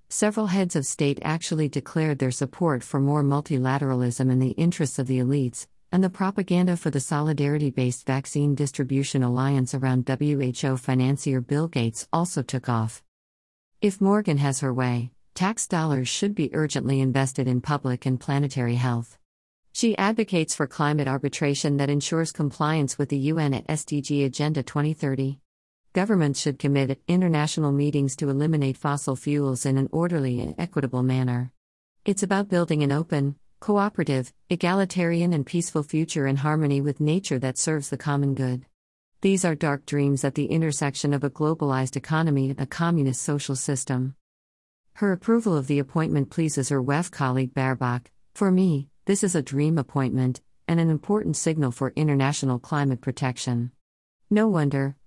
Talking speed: 155 wpm